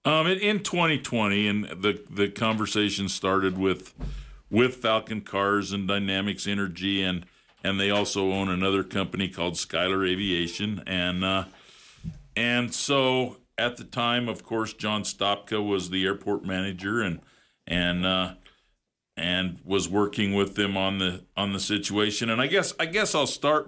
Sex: male